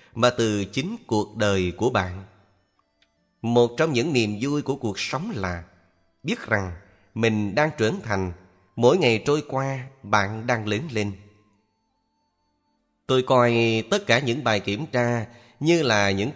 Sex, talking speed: male, 150 wpm